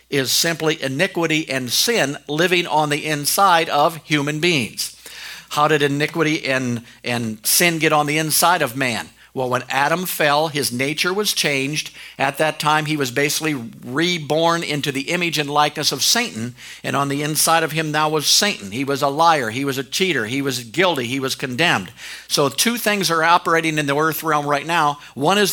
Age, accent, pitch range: 50-69, American, 140-165 Hz